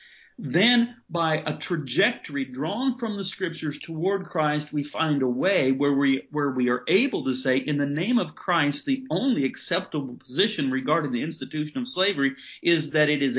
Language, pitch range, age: English, 135-175 Hz, 50-69